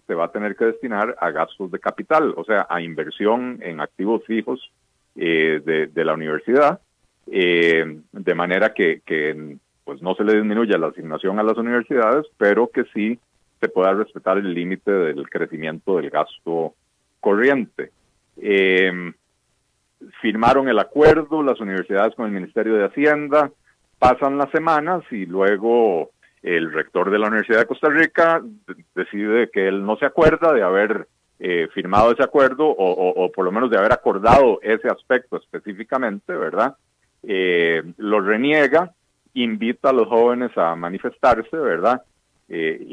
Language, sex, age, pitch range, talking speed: Spanish, male, 40-59, 90-125 Hz, 150 wpm